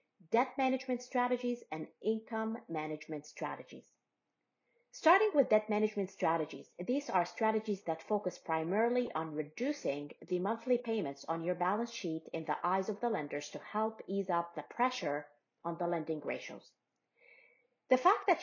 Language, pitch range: English, 165-235 Hz